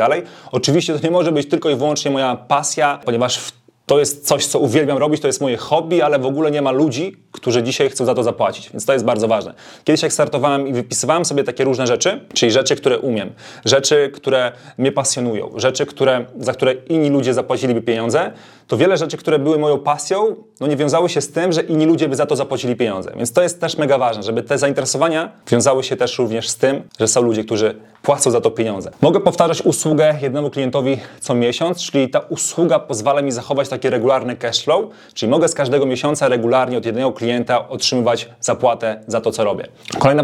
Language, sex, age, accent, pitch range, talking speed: Polish, male, 30-49, native, 120-150 Hz, 210 wpm